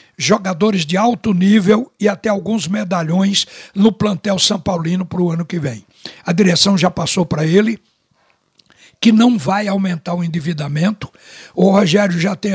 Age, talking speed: 60-79, 160 wpm